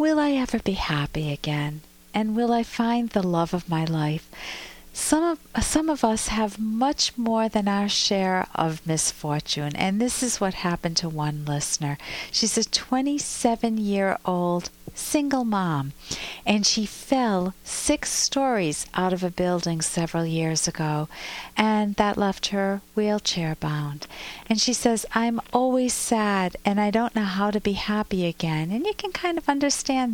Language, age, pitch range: English, 50-69, 180-240 Hz